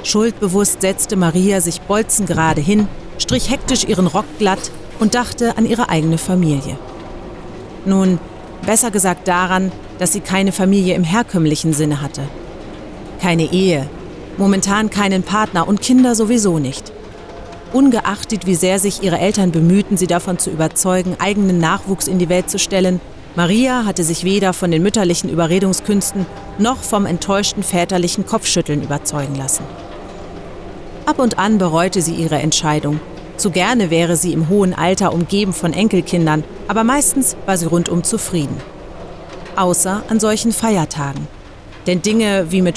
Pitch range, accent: 165-205 Hz, German